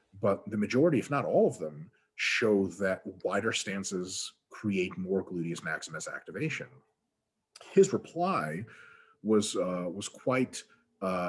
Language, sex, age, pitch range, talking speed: English, male, 30-49, 95-130 Hz, 130 wpm